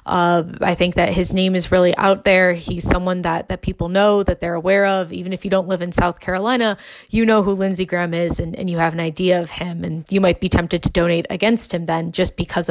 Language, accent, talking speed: English, American, 255 wpm